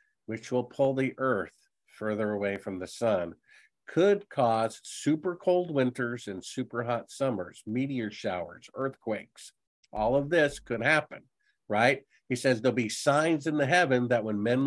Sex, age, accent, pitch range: male, 50-69, American, 110-135 Hz